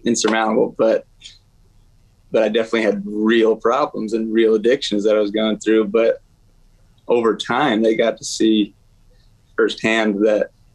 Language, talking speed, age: English, 140 wpm, 20-39